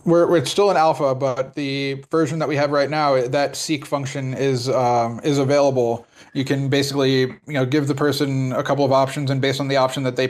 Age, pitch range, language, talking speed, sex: 20-39, 120-140 Hz, English, 225 wpm, male